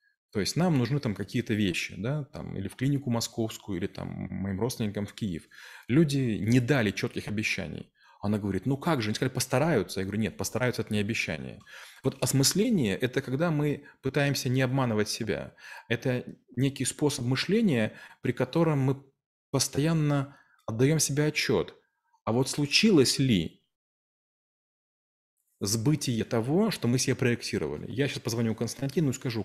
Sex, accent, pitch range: male, native, 110-145 Hz